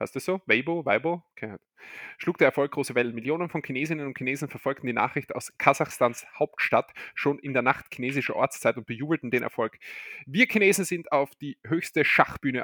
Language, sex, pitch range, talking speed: German, male, 130-155 Hz, 190 wpm